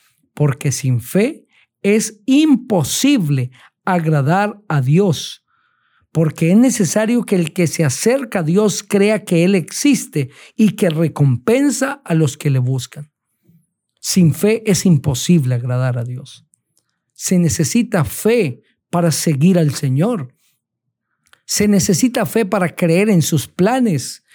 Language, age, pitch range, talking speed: Spanish, 50-69, 150-215 Hz, 130 wpm